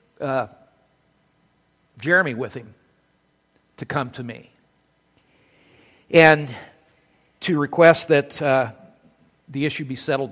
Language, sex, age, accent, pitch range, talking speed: English, male, 60-79, American, 120-150 Hz, 100 wpm